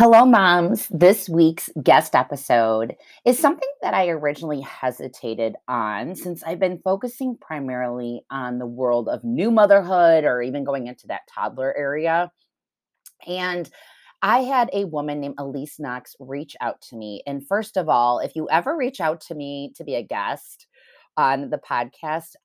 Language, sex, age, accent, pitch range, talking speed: English, female, 30-49, American, 135-195 Hz, 165 wpm